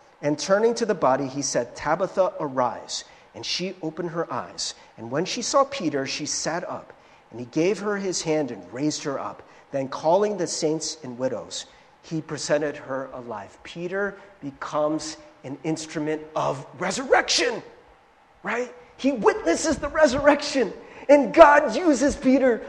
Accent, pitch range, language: American, 155-260 Hz, English